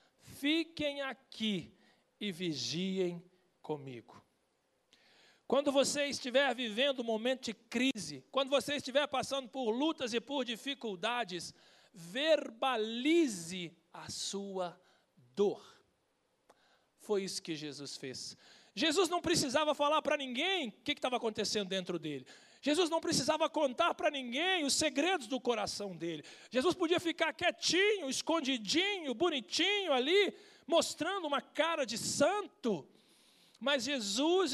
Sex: male